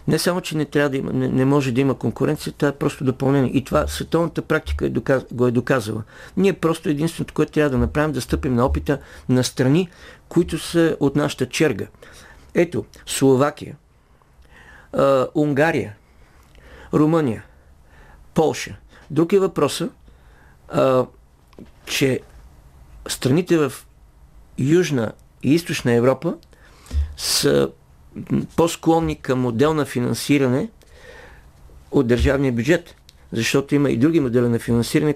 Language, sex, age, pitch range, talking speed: Bulgarian, male, 50-69, 115-150 Hz, 120 wpm